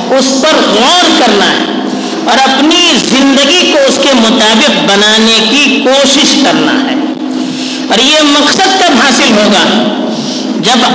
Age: 50-69